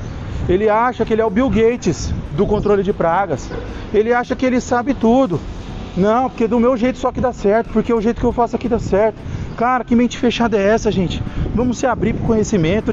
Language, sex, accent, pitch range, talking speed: Portuguese, male, Brazilian, 160-230 Hz, 220 wpm